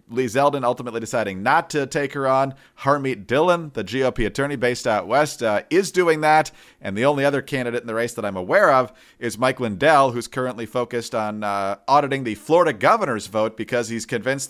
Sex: male